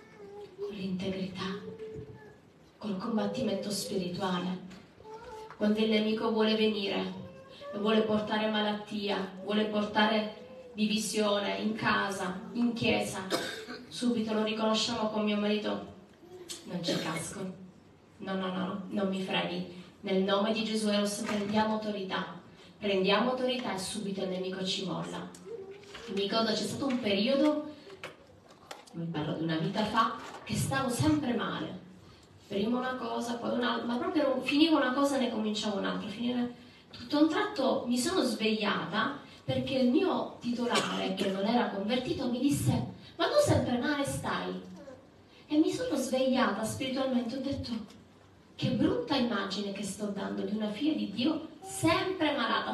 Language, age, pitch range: Italian, 20-39, 195-255 Hz